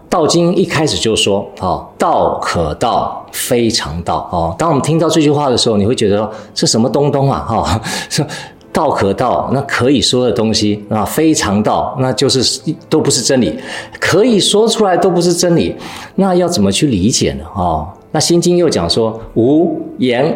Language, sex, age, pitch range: Chinese, male, 50-69, 125-190 Hz